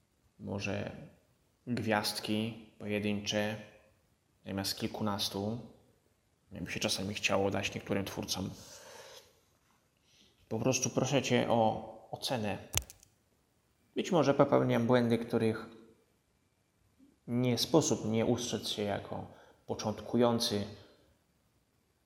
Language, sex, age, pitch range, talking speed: Polish, male, 20-39, 105-120 Hz, 80 wpm